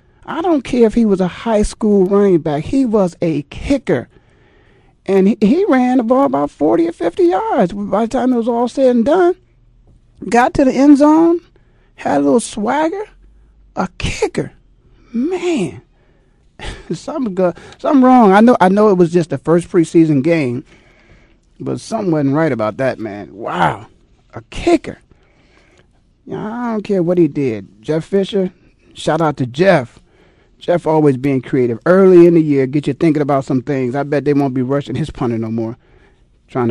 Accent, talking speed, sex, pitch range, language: American, 180 wpm, male, 130-210 Hz, English